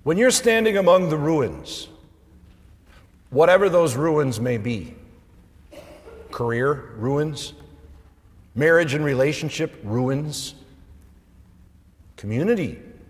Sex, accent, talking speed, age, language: male, American, 85 wpm, 50-69, English